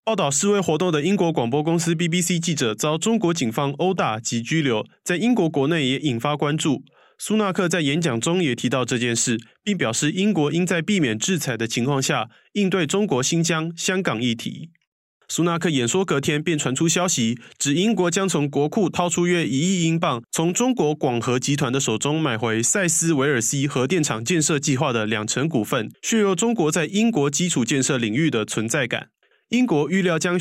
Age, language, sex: 20-39, Chinese, male